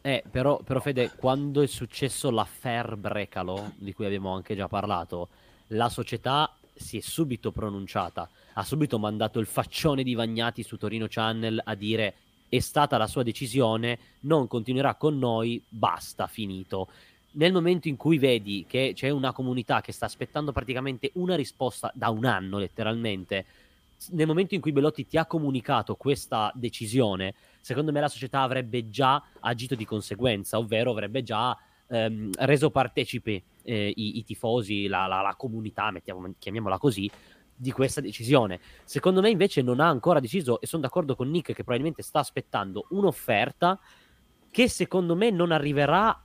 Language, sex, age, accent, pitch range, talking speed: Italian, male, 20-39, native, 110-145 Hz, 160 wpm